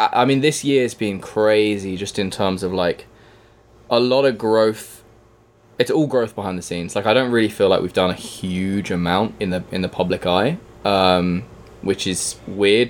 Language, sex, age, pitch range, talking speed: English, male, 20-39, 90-110 Hz, 195 wpm